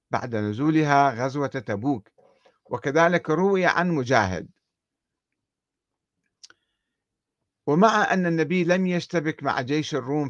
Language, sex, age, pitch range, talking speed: Arabic, male, 50-69, 125-170 Hz, 95 wpm